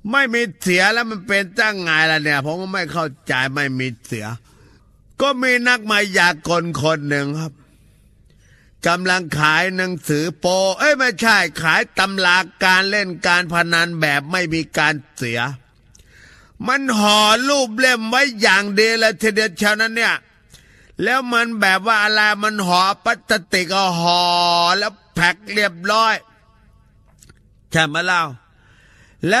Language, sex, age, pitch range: Thai, male, 30-49, 150-205 Hz